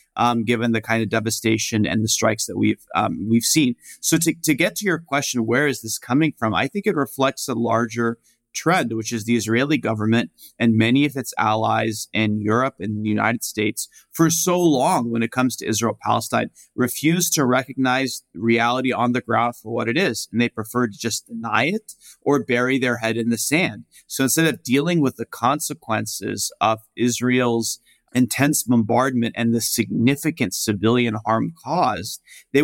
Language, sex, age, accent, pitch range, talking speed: English, male, 30-49, American, 115-130 Hz, 185 wpm